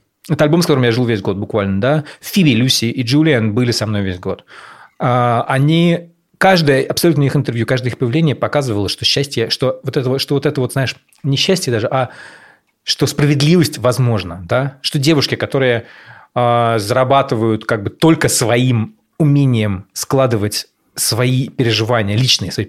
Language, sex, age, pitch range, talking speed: Russian, male, 30-49, 115-150 Hz, 155 wpm